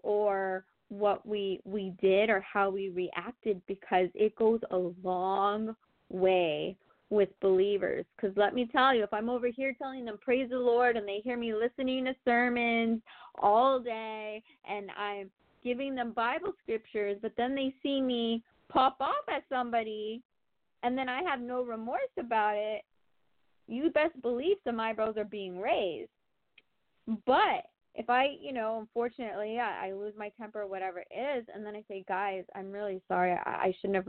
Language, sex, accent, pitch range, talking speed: English, female, American, 205-270 Hz, 175 wpm